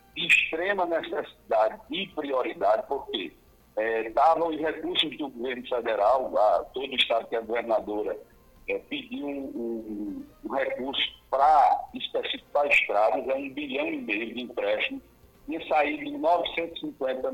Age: 60-79